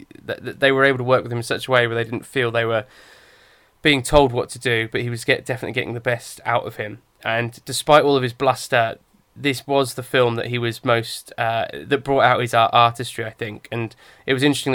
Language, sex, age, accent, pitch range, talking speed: English, male, 20-39, British, 115-130 Hz, 250 wpm